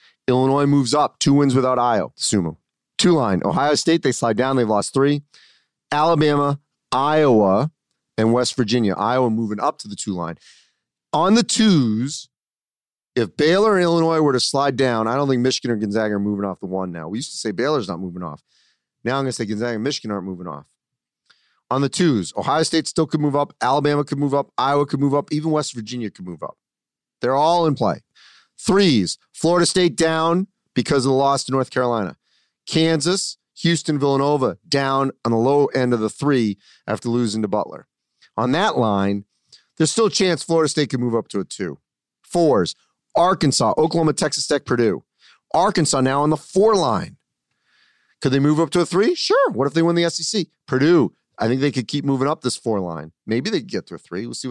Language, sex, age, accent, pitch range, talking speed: English, male, 30-49, American, 115-160 Hz, 205 wpm